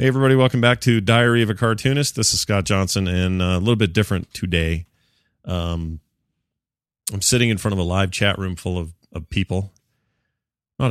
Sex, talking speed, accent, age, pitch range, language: male, 185 wpm, American, 30-49, 90-115 Hz, English